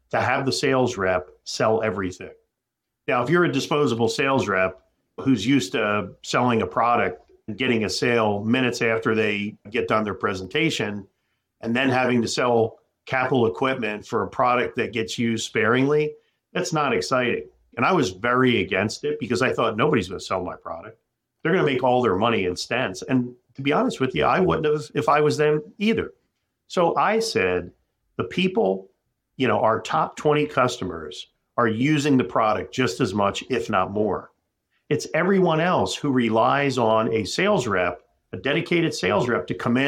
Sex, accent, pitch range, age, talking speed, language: male, American, 110-150 Hz, 50-69, 180 wpm, English